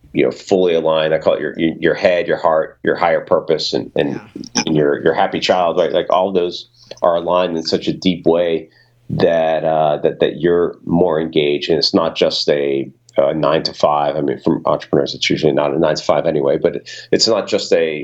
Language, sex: English, male